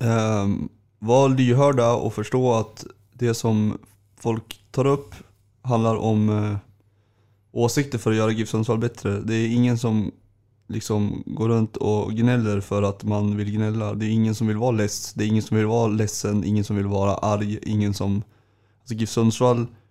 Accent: native